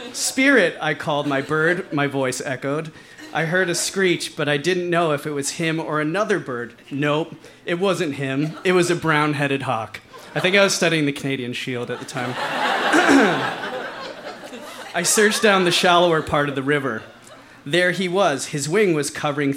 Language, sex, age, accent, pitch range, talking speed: English, male, 30-49, American, 140-180 Hz, 180 wpm